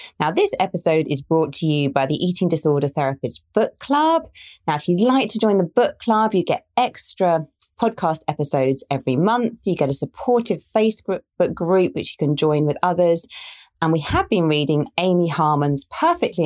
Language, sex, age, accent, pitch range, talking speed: English, female, 40-59, British, 150-190 Hz, 180 wpm